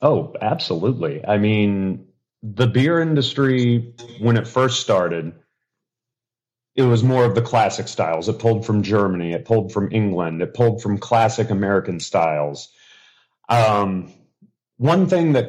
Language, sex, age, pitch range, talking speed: English, male, 40-59, 95-120 Hz, 140 wpm